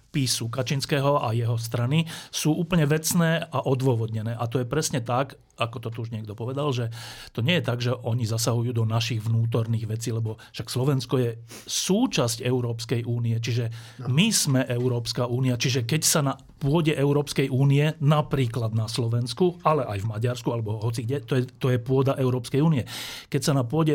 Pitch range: 120-140 Hz